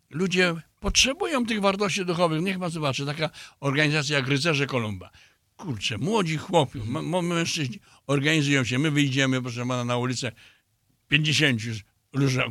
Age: 60-79